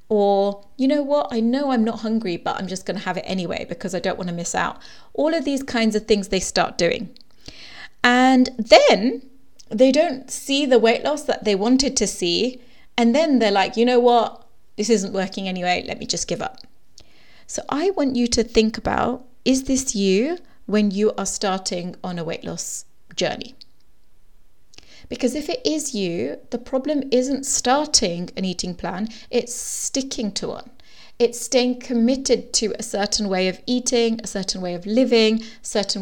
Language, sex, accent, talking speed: English, female, British, 185 wpm